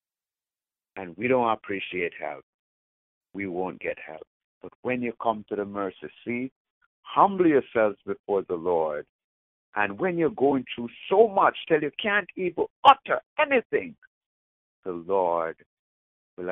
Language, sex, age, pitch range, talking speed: English, male, 60-79, 85-130 Hz, 140 wpm